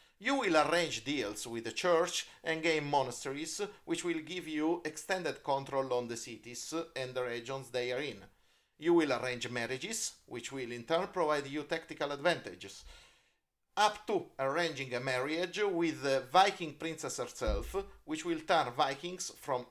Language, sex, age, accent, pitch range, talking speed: English, male, 40-59, Italian, 125-175 Hz, 160 wpm